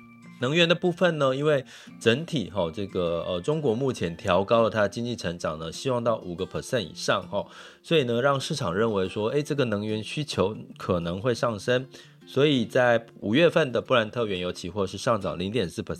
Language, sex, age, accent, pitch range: Chinese, male, 30-49, native, 100-140 Hz